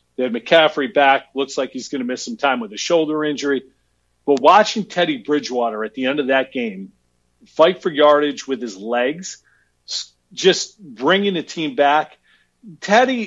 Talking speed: 170 wpm